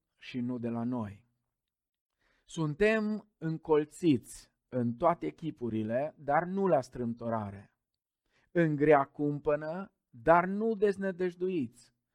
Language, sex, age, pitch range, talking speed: Romanian, male, 50-69, 120-160 Hz, 95 wpm